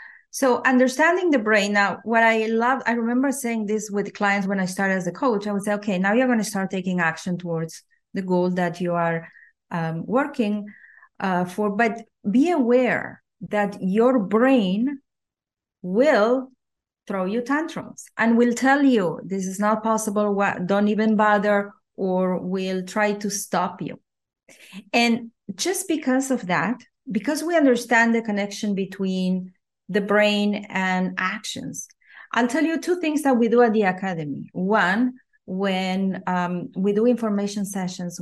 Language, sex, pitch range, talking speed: English, female, 195-240 Hz, 160 wpm